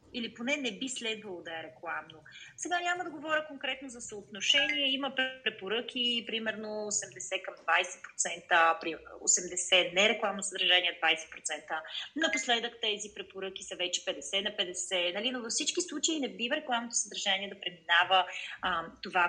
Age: 30-49